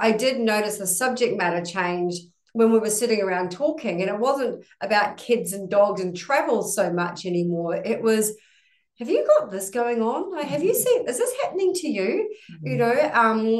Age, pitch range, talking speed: 30-49, 180-225 Hz, 200 wpm